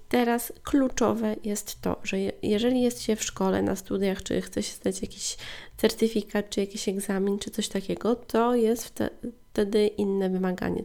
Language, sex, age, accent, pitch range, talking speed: Polish, female, 20-39, native, 200-240 Hz, 160 wpm